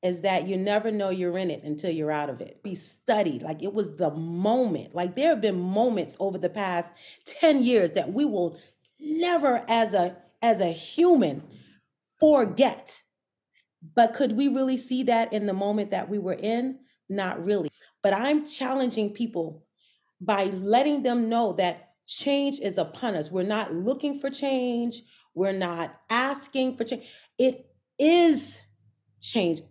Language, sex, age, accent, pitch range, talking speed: English, female, 40-59, American, 180-255 Hz, 165 wpm